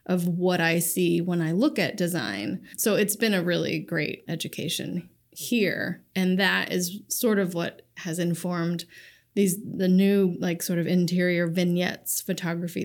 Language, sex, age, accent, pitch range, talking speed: English, female, 20-39, American, 175-205 Hz, 160 wpm